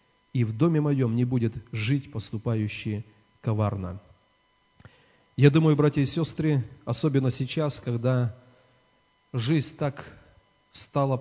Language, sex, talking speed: Russian, male, 105 wpm